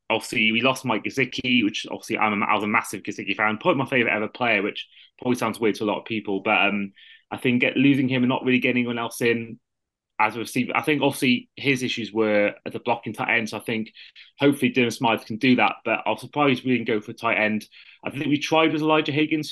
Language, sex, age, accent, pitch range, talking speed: English, male, 20-39, British, 110-130 Hz, 255 wpm